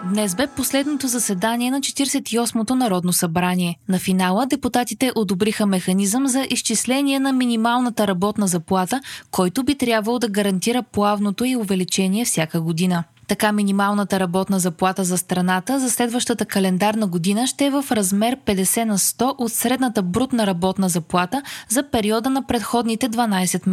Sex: female